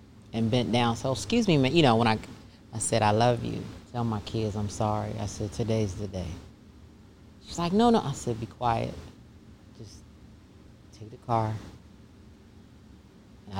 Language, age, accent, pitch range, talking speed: English, 30-49, American, 105-125 Hz, 170 wpm